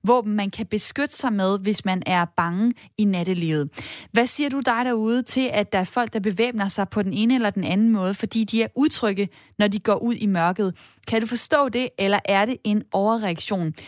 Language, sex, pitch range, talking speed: Danish, female, 205-260 Hz, 220 wpm